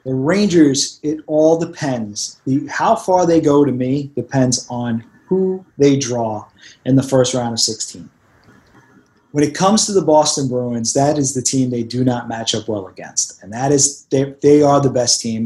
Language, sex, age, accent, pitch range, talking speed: English, male, 30-49, American, 130-175 Hz, 195 wpm